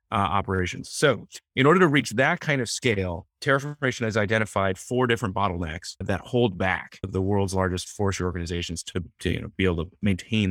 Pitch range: 100-135 Hz